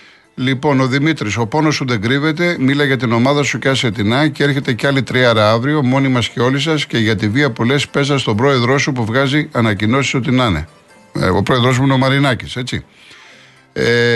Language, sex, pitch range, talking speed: Greek, male, 110-145 Hz, 220 wpm